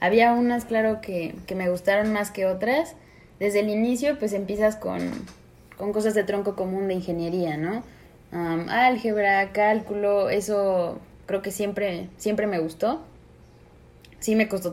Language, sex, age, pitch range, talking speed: Spanish, female, 20-39, 170-210 Hz, 150 wpm